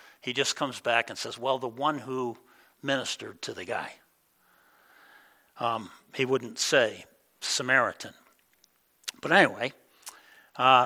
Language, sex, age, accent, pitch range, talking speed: English, male, 60-79, American, 135-205 Hz, 120 wpm